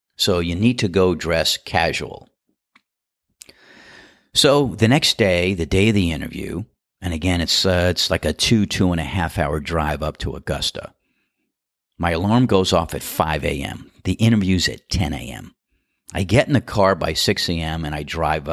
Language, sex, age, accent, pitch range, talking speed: English, male, 50-69, American, 80-105 Hz, 180 wpm